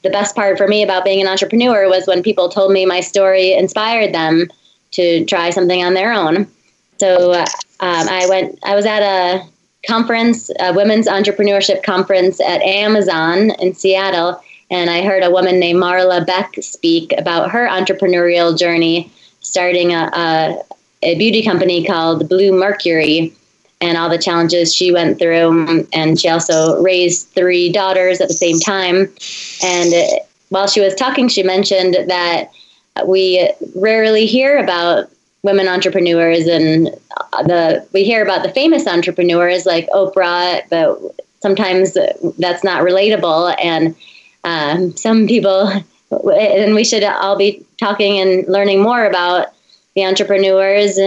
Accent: American